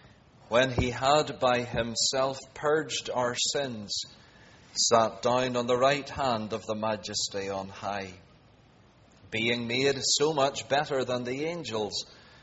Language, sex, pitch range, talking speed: English, male, 110-145 Hz, 130 wpm